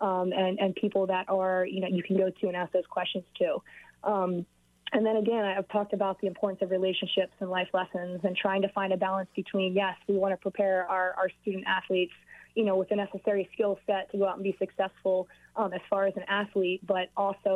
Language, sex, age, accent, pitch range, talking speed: English, female, 20-39, American, 180-200 Hz, 230 wpm